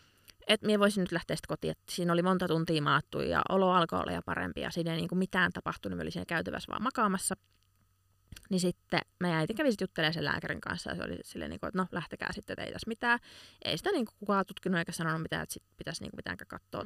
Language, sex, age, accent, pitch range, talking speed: Finnish, female, 20-39, native, 145-190 Hz, 230 wpm